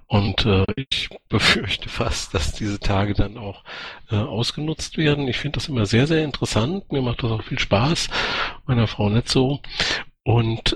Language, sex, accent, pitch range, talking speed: German, male, German, 100-120 Hz, 175 wpm